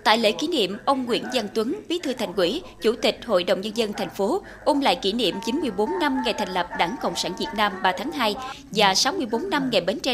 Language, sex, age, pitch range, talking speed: Vietnamese, female, 20-39, 200-275 Hz, 255 wpm